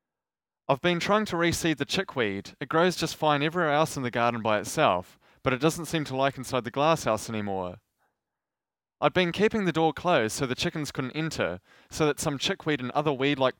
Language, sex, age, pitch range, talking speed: English, male, 20-39, 125-160 Hz, 205 wpm